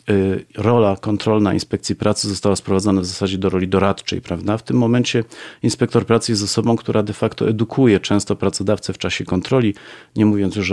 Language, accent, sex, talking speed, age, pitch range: Polish, native, male, 175 wpm, 40-59, 95-115 Hz